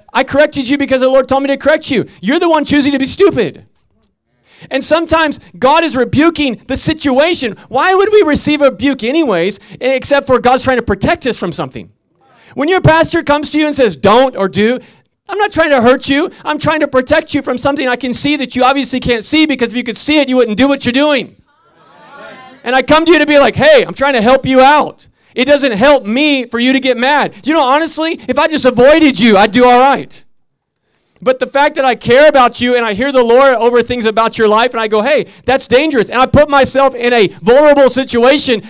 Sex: male